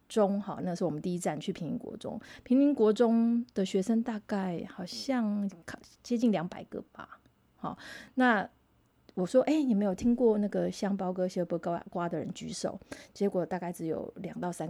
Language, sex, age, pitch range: Chinese, female, 30-49, 185-230 Hz